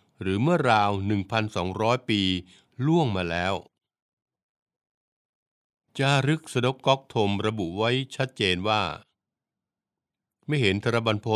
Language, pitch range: Thai, 95-130 Hz